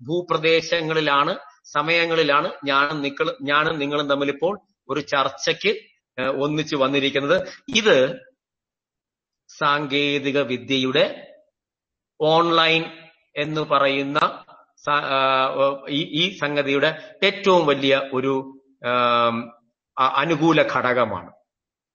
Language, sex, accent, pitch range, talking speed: Malayalam, male, native, 140-165 Hz, 65 wpm